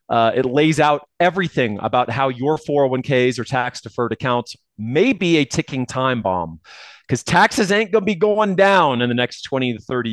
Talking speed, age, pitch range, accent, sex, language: 195 wpm, 30-49, 120-165 Hz, American, male, English